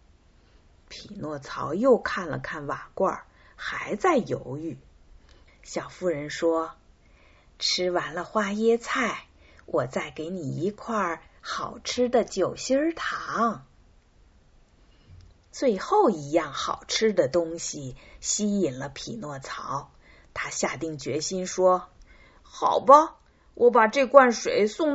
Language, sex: Chinese, female